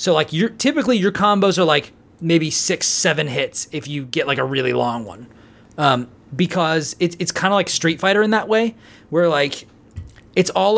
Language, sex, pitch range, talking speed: English, male, 140-180 Hz, 200 wpm